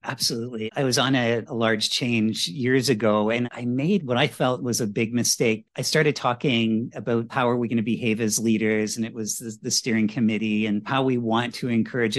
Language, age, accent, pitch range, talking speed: English, 50-69, American, 115-135 Hz, 220 wpm